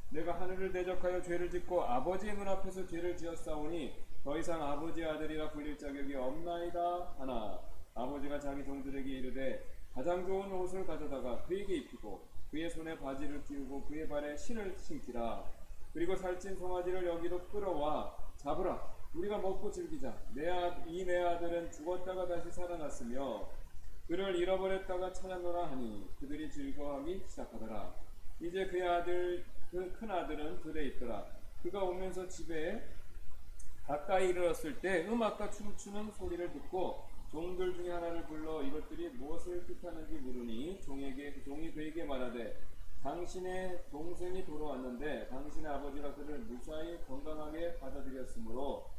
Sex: male